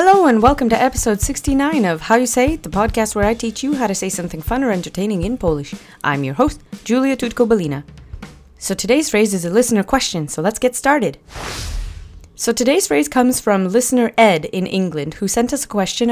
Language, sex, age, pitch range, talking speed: English, female, 30-49, 170-240 Hz, 210 wpm